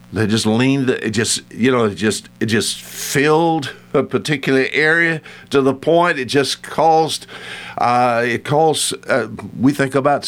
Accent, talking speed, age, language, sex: American, 165 wpm, 60-79, English, male